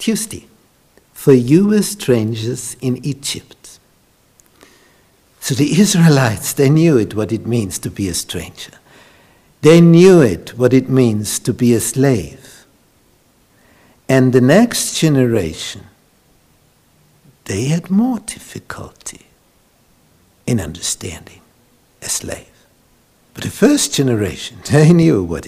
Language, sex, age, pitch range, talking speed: English, male, 60-79, 110-155 Hz, 115 wpm